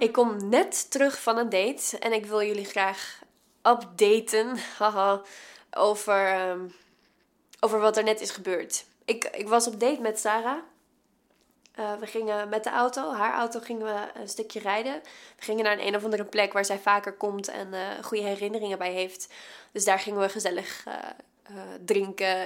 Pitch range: 200-240 Hz